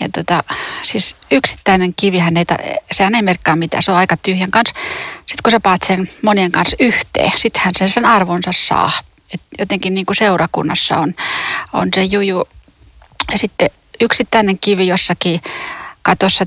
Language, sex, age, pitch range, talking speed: Finnish, female, 30-49, 180-220 Hz, 155 wpm